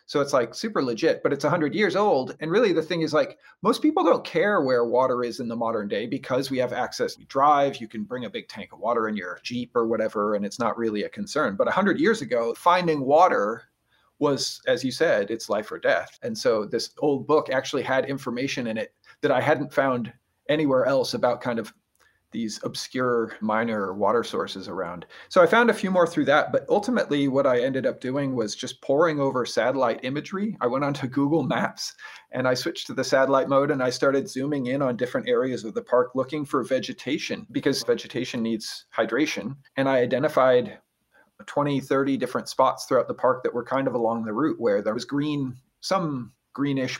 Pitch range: 125-155 Hz